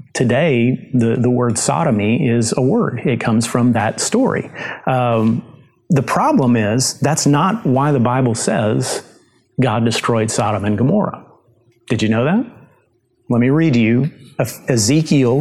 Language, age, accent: English, 40-59, American